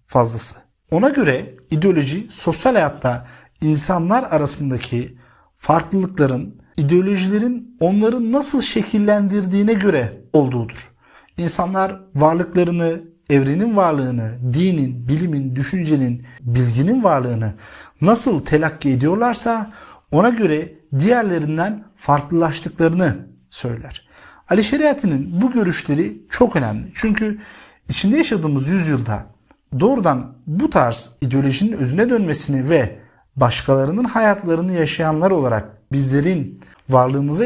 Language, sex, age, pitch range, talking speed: Turkish, male, 50-69, 135-200 Hz, 90 wpm